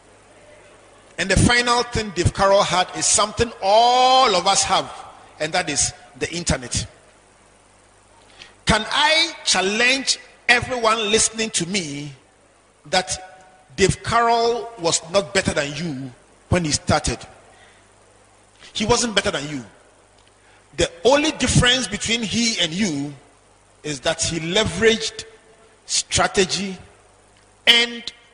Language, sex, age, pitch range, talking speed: English, male, 40-59, 120-205 Hz, 115 wpm